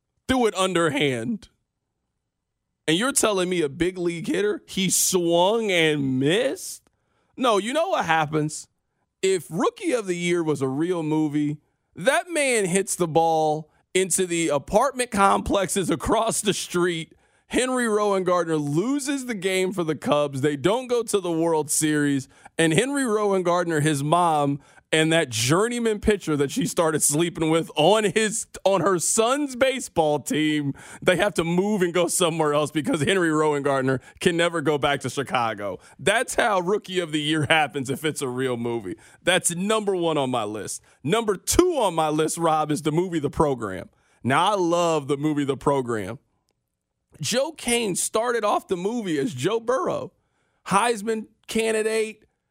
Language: English